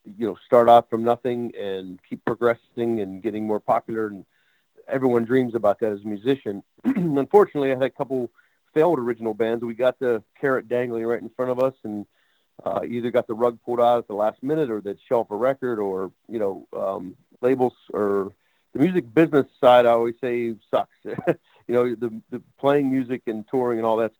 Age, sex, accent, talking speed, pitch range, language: 40-59, male, American, 200 wpm, 105-125 Hz, English